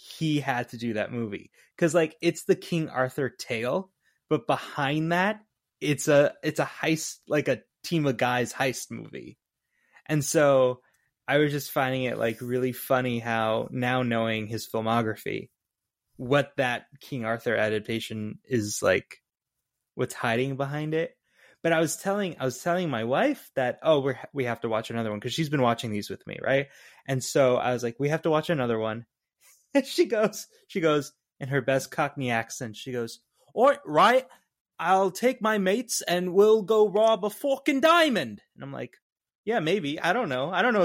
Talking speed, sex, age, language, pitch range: 190 wpm, male, 20-39, English, 125-190 Hz